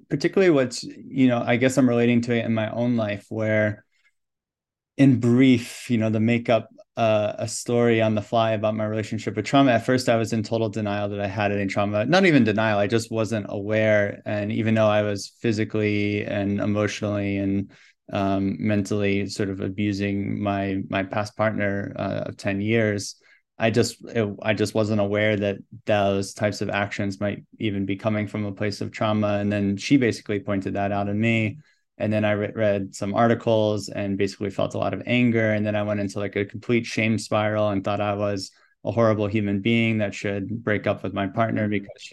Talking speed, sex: 200 wpm, male